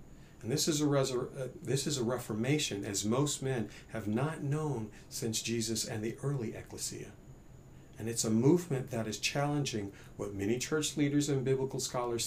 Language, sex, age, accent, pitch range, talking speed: English, male, 40-59, American, 110-140 Hz, 175 wpm